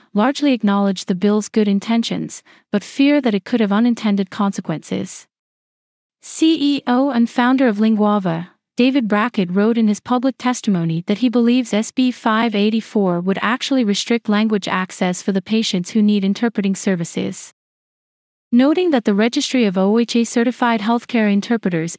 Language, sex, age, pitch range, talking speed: English, female, 30-49, 200-240 Hz, 140 wpm